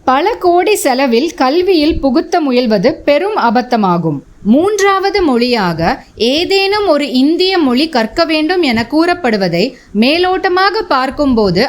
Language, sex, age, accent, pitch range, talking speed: Tamil, female, 20-39, native, 235-340 Hz, 105 wpm